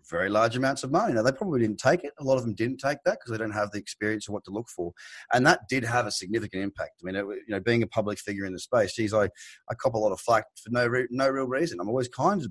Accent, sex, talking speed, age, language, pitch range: Australian, male, 315 wpm, 30-49, English, 105-125 Hz